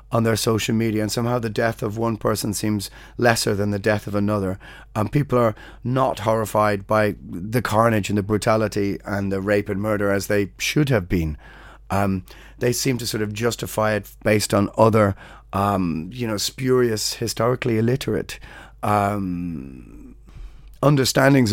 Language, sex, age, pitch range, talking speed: English, male, 30-49, 105-125 Hz, 160 wpm